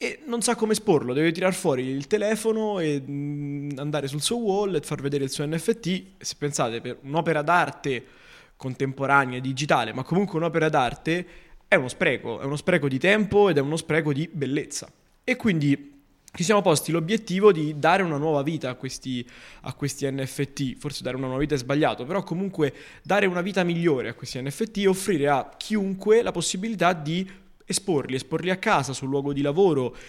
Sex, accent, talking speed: male, native, 180 wpm